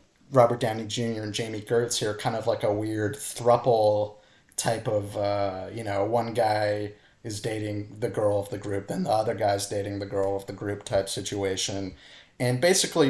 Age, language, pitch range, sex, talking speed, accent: 30-49, English, 105-125 Hz, male, 190 wpm, American